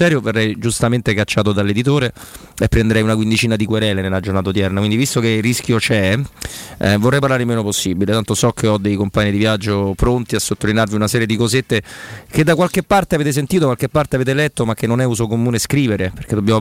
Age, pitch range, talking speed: 30-49, 105-125 Hz, 215 wpm